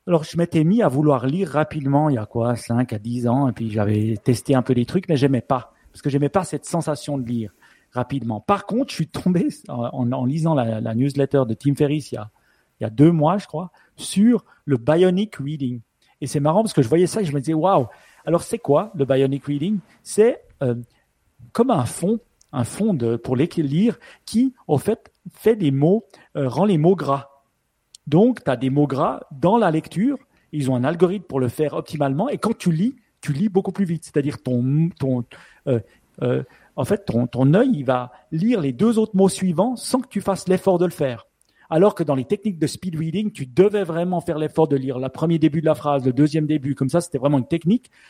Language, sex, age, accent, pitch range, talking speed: French, male, 40-59, French, 135-185 Hz, 230 wpm